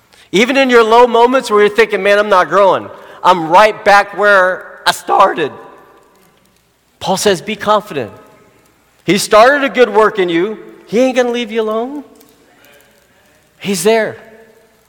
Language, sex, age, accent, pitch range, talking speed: English, male, 40-59, American, 160-220 Hz, 155 wpm